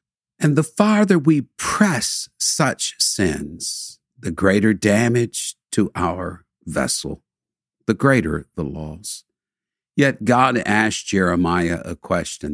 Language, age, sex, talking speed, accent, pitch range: English, 60-79, male, 110 wpm, American, 90-120 Hz